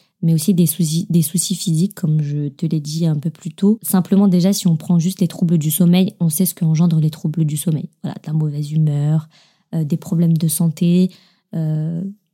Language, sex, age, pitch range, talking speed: French, female, 20-39, 170-200 Hz, 225 wpm